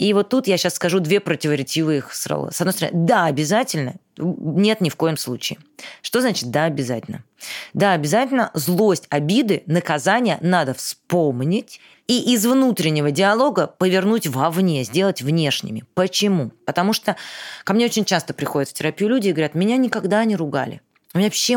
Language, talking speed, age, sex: Russian, 160 wpm, 20-39, female